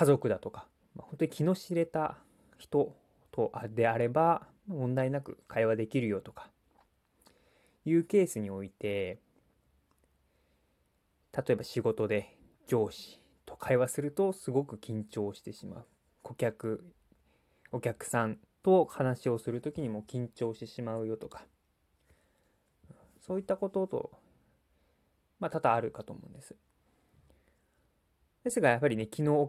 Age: 20-39